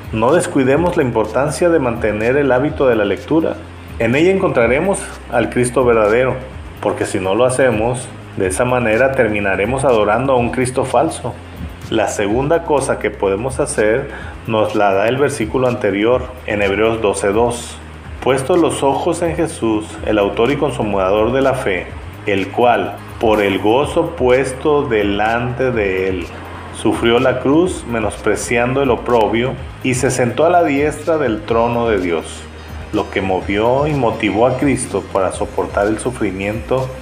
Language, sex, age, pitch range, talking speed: Spanish, male, 40-59, 105-130 Hz, 150 wpm